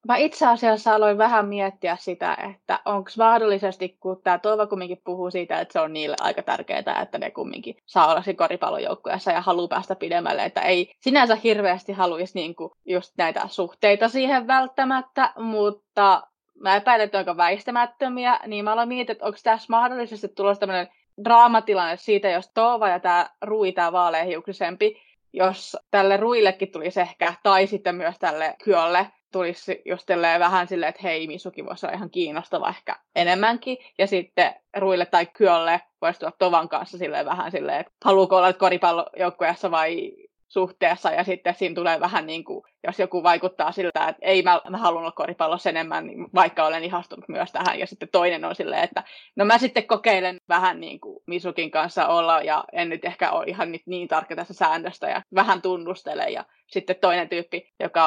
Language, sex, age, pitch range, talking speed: Finnish, female, 20-39, 175-215 Hz, 170 wpm